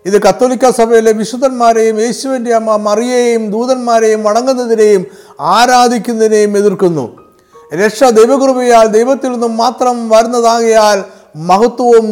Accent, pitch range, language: native, 205-245 Hz, Malayalam